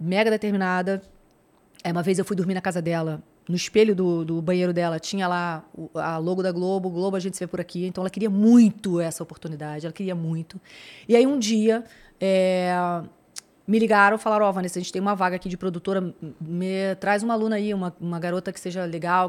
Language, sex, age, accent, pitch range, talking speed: Portuguese, female, 20-39, Brazilian, 175-205 Hz, 215 wpm